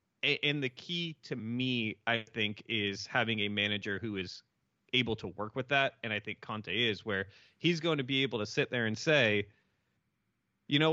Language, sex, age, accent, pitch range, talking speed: English, male, 30-49, American, 105-130 Hz, 200 wpm